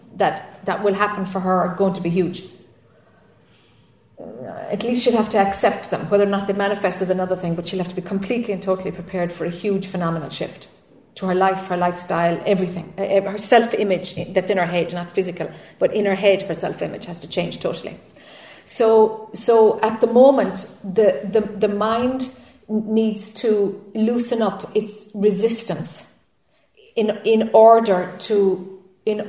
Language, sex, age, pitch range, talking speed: English, female, 40-59, 185-225 Hz, 170 wpm